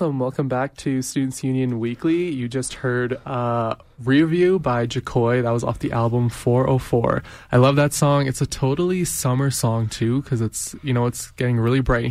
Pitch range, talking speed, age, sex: 120-135 Hz, 185 wpm, 20-39, male